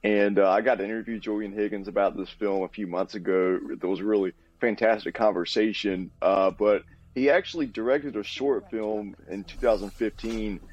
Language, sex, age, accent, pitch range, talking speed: English, male, 30-49, American, 95-110 Hz, 175 wpm